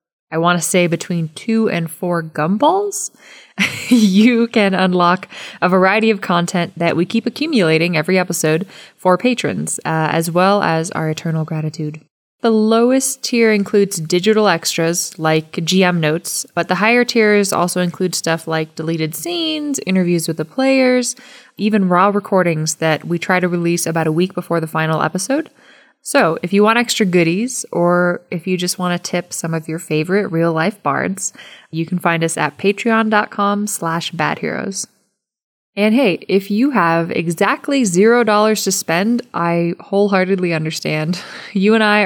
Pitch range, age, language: 170-215 Hz, 20-39, English